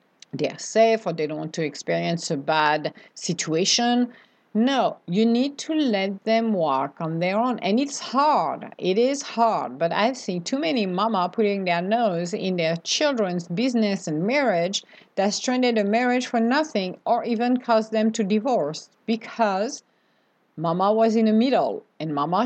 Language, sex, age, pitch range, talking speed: English, female, 50-69, 180-230 Hz, 165 wpm